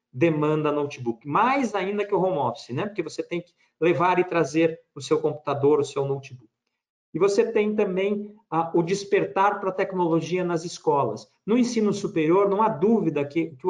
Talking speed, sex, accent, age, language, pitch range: 185 wpm, male, Brazilian, 50-69, Portuguese, 160-220 Hz